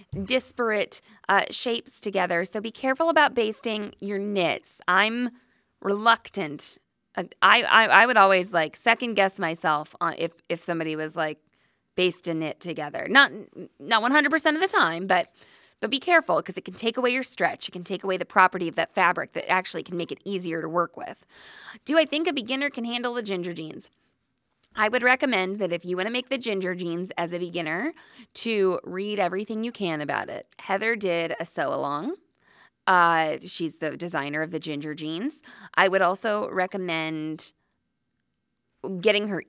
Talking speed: 180 wpm